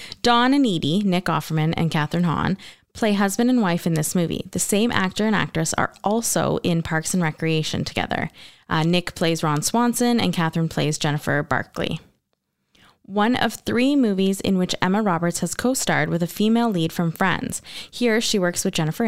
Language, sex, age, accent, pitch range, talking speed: English, female, 20-39, American, 165-200 Hz, 180 wpm